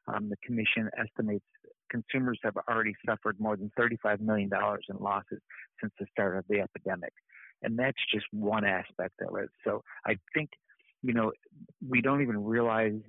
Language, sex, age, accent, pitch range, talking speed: English, male, 50-69, American, 105-120 Hz, 165 wpm